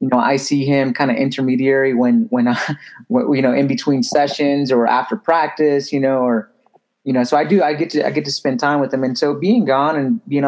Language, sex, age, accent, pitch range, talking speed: English, male, 30-49, American, 125-175 Hz, 250 wpm